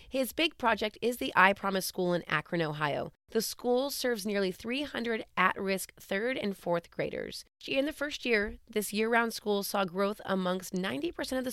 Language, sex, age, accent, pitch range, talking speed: English, female, 30-49, American, 180-230 Hz, 170 wpm